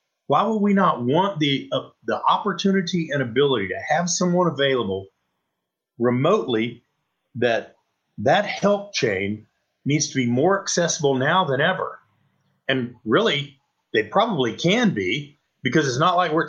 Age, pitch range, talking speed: 50-69, 130-185 Hz, 140 wpm